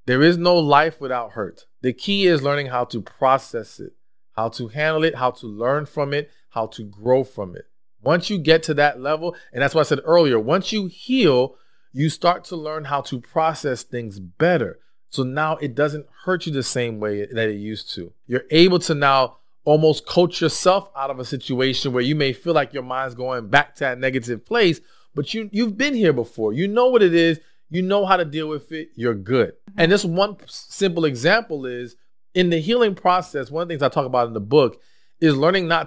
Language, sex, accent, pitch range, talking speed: English, male, American, 130-170 Hz, 220 wpm